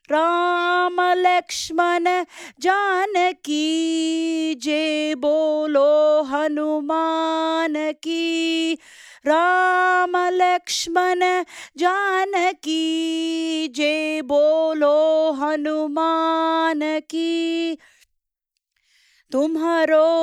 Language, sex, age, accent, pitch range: English, female, 30-49, Indian, 300-355 Hz